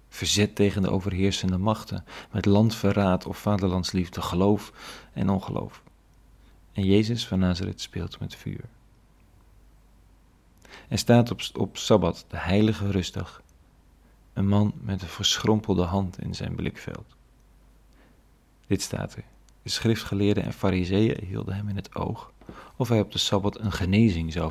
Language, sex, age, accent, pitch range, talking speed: Dutch, male, 40-59, Dutch, 95-110 Hz, 135 wpm